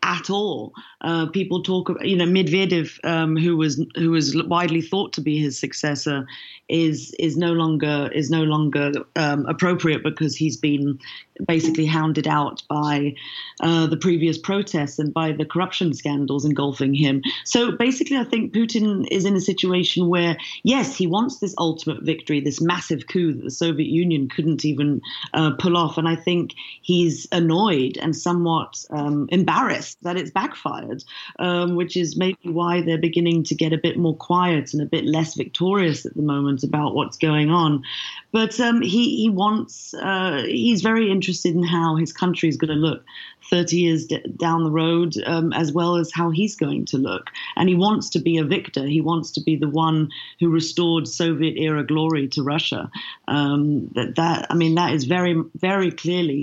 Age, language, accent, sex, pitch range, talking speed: 30-49, English, British, female, 155-180 Hz, 185 wpm